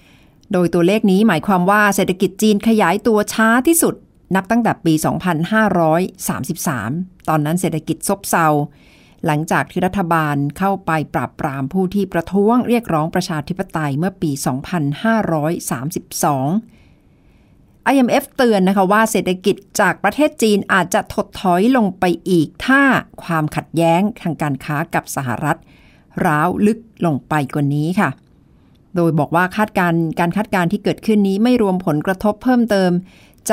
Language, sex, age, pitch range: Thai, female, 60-79, 155-210 Hz